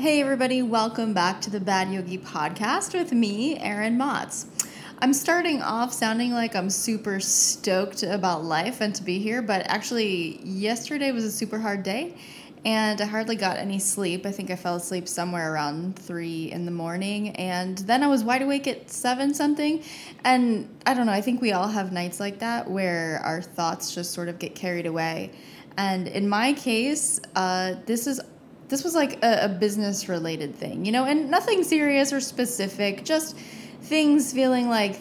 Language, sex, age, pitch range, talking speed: English, female, 10-29, 190-255 Hz, 185 wpm